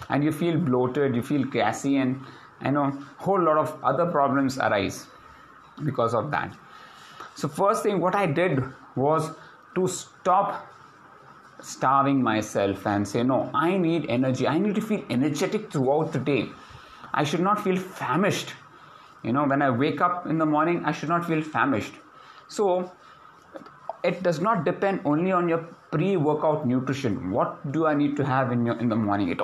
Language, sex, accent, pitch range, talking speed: English, male, Indian, 135-175 Hz, 175 wpm